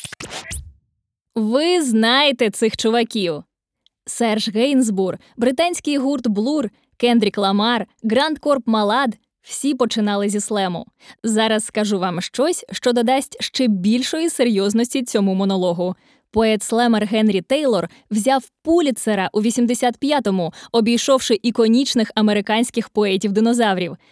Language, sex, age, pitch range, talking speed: Ukrainian, female, 20-39, 210-260 Hz, 100 wpm